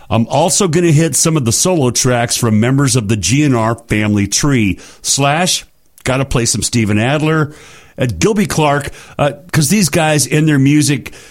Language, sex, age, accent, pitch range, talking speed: English, male, 50-69, American, 120-165 Hz, 180 wpm